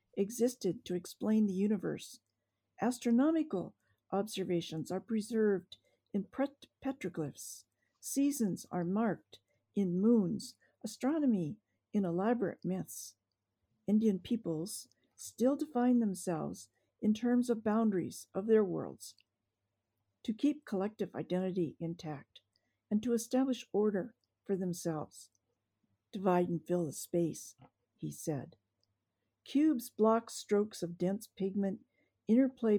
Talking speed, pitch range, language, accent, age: 105 wpm, 165-235 Hz, English, American, 50-69